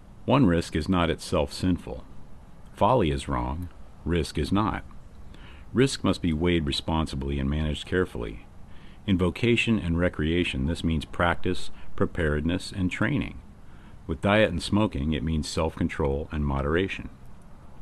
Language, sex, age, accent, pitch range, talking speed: English, male, 50-69, American, 75-95 Hz, 130 wpm